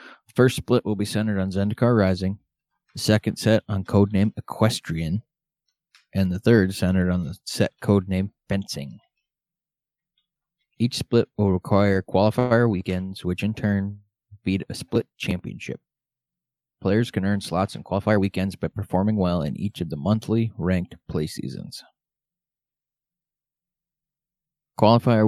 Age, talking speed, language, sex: 20-39, 135 wpm, English, male